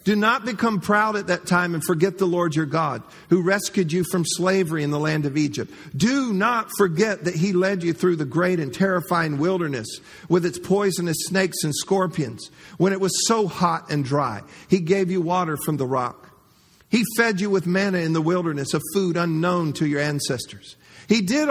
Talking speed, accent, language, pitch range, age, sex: 200 wpm, American, English, 165-210 Hz, 50-69, male